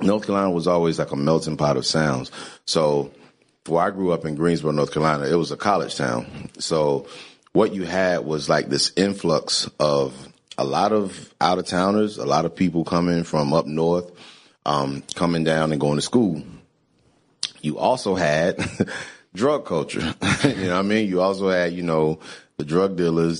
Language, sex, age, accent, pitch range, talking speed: English, male, 30-49, American, 75-85 Hz, 180 wpm